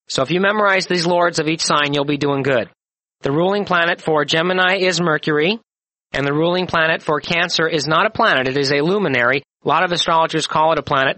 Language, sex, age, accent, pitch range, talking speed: English, male, 40-59, American, 140-170 Hz, 225 wpm